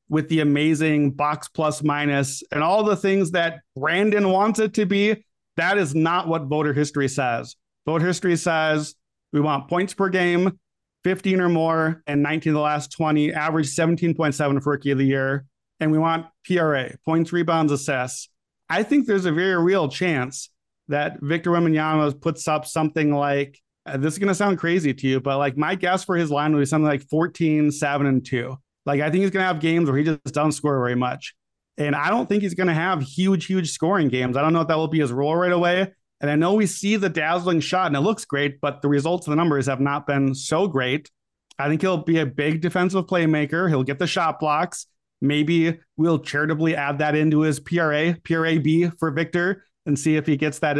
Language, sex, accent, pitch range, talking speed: English, male, American, 145-175 Hz, 215 wpm